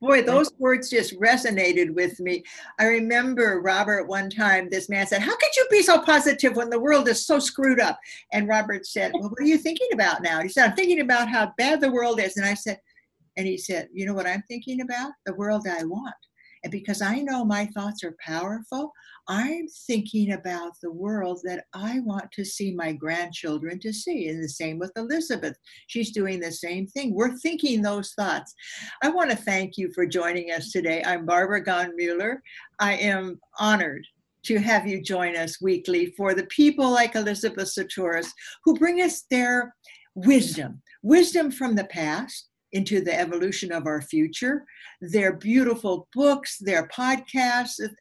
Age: 60-79